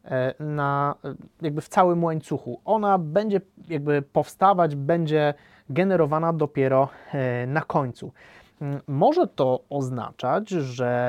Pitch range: 135-185 Hz